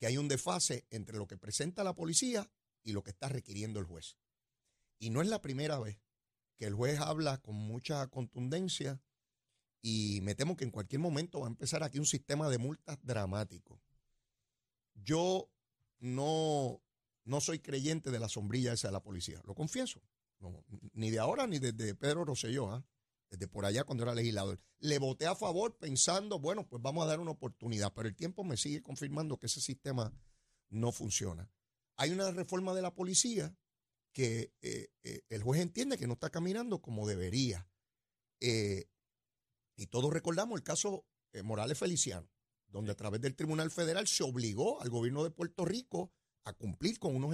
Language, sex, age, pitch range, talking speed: Spanish, male, 40-59, 110-155 Hz, 175 wpm